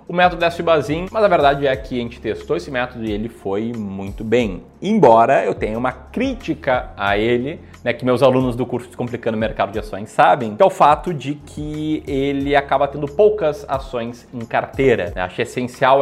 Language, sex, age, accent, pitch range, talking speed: Portuguese, male, 20-39, Brazilian, 120-160 Hz, 200 wpm